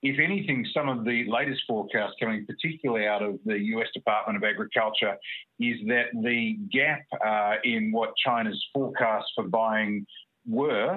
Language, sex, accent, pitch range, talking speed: English, male, Australian, 110-160 Hz, 155 wpm